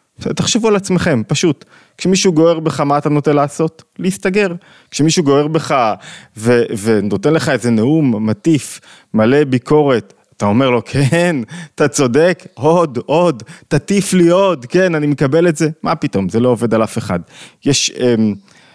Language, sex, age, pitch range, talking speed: Hebrew, male, 20-39, 120-180 Hz, 155 wpm